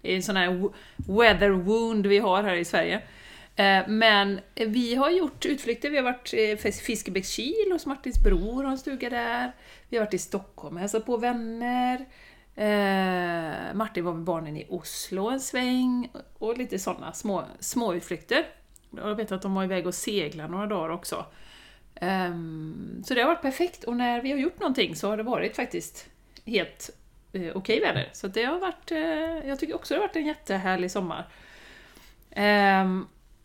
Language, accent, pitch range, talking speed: Swedish, native, 195-255 Hz, 170 wpm